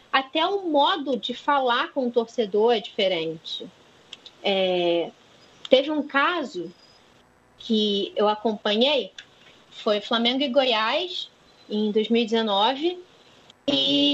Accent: Brazilian